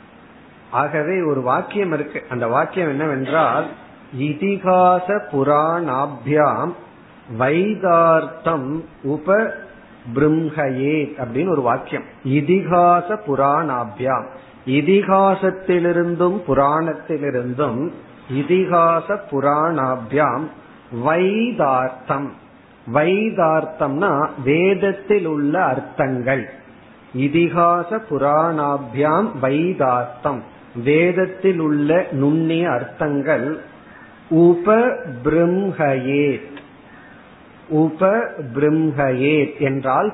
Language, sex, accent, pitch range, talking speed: Tamil, male, native, 140-180 Hz, 50 wpm